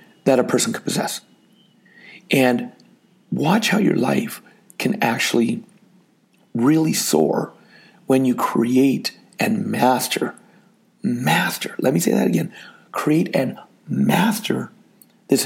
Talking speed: 115 wpm